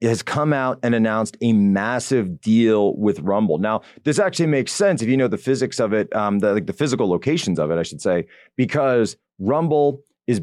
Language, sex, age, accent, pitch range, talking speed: English, male, 30-49, American, 105-130 Hz, 215 wpm